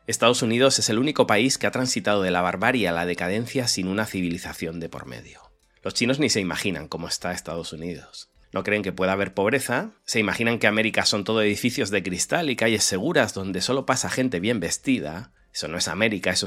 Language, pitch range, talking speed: Spanish, 90-115 Hz, 215 wpm